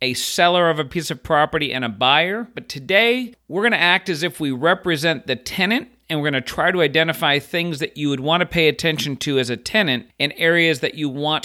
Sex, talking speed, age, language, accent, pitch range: male, 225 wpm, 40-59, English, American, 130-170 Hz